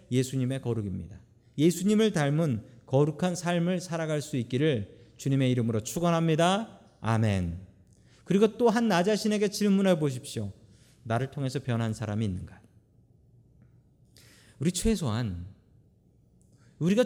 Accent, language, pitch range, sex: native, Korean, 115-165 Hz, male